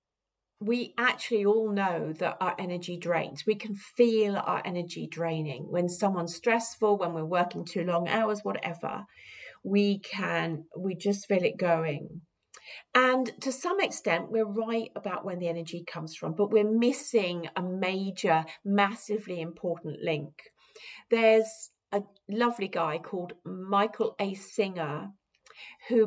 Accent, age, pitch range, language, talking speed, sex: British, 40-59, 185-240 Hz, English, 140 wpm, female